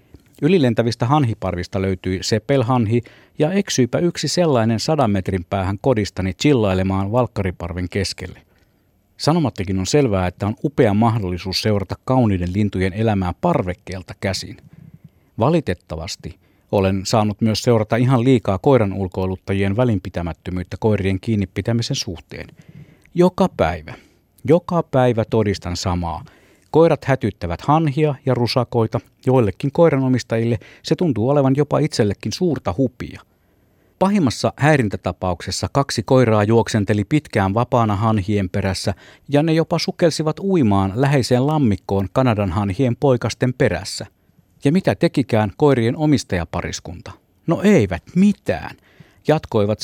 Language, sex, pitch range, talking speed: Finnish, male, 95-135 Hz, 110 wpm